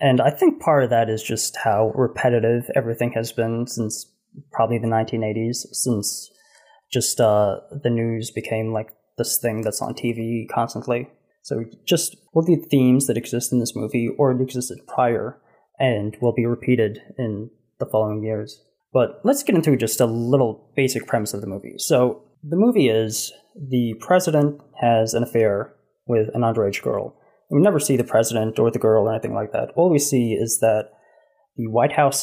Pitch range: 110-135 Hz